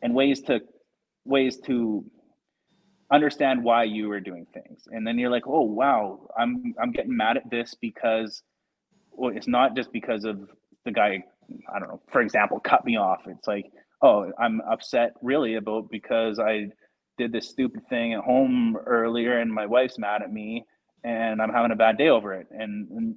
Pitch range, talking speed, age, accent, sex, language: 110-130 Hz, 185 wpm, 20-39, American, male, English